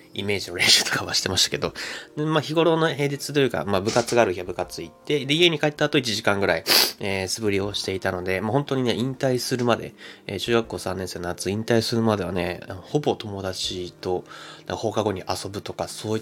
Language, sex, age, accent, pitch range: Japanese, male, 20-39, native, 95-130 Hz